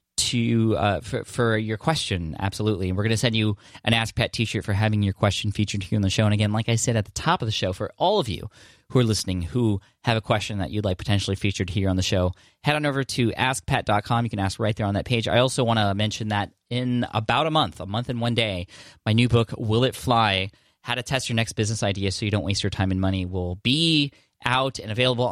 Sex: male